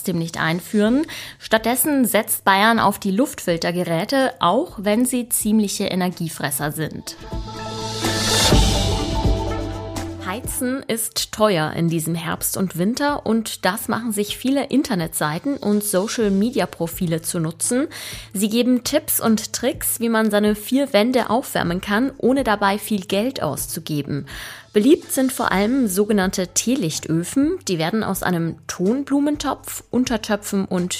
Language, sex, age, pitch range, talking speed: German, female, 20-39, 170-230 Hz, 120 wpm